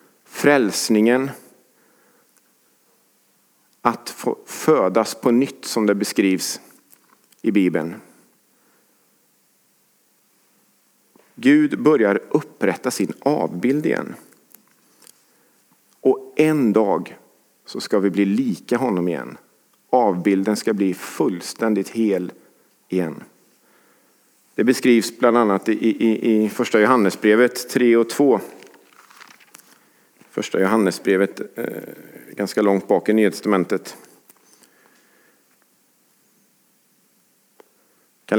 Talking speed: 85 wpm